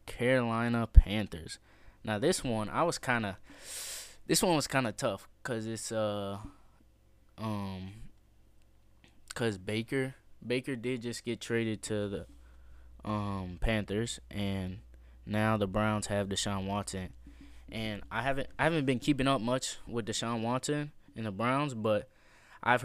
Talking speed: 140 wpm